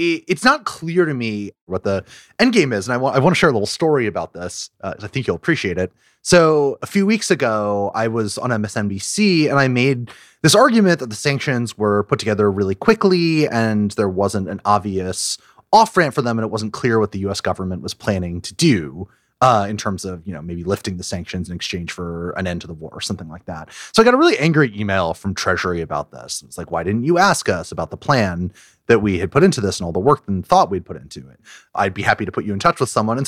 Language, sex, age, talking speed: English, male, 30-49, 250 wpm